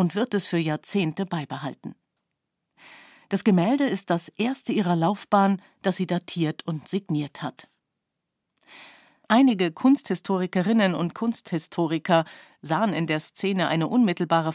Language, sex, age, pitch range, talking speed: German, female, 50-69, 160-200 Hz, 120 wpm